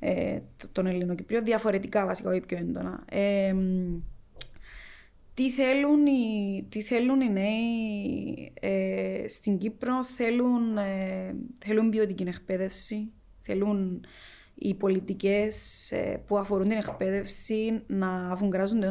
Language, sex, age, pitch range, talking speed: Greek, female, 20-39, 190-225 Hz, 85 wpm